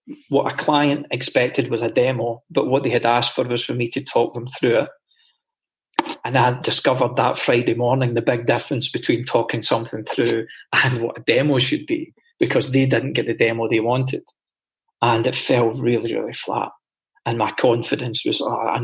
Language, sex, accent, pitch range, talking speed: English, male, British, 120-145 Hz, 190 wpm